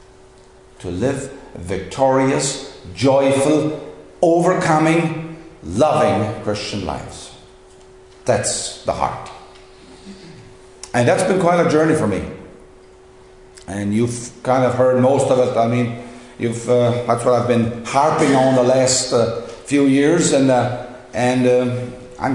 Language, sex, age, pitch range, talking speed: English, male, 50-69, 115-150 Hz, 125 wpm